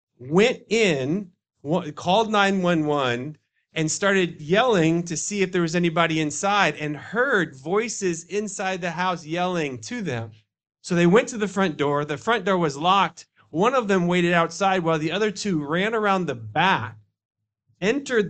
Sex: male